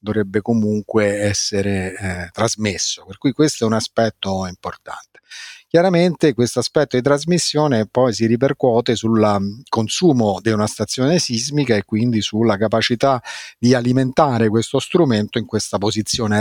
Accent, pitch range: native, 110-130 Hz